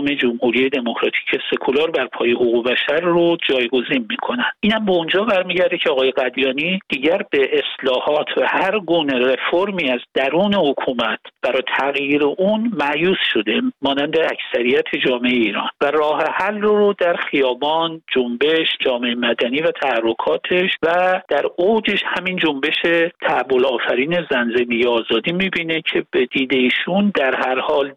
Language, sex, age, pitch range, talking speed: Persian, male, 50-69, 140-205 Hz, 140 wpm